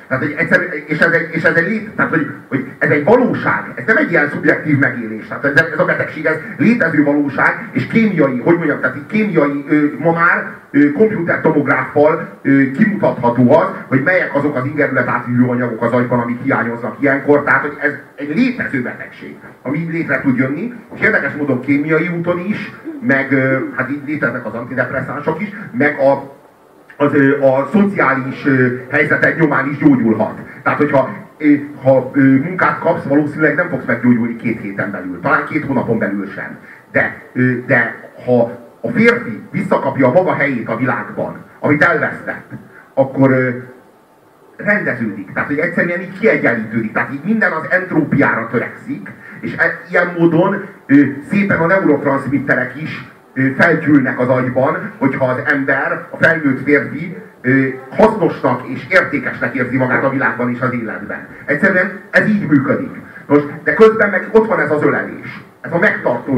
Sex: male